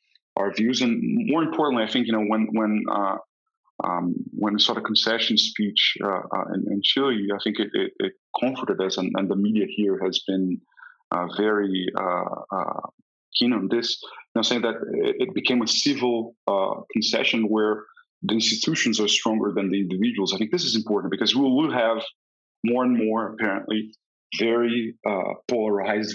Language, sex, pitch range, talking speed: Spanish, male, 105-140 Hz, 180 wpm